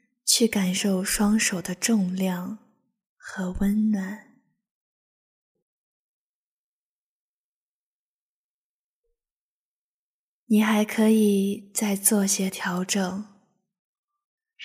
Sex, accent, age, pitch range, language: female, native, 20-39, 195-225 Hz, Chinese